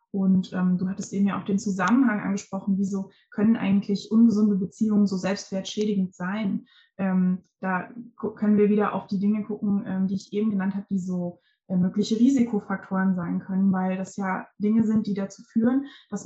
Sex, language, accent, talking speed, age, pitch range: female, German, German, 180 wpm, 20-39, 195-220 Hz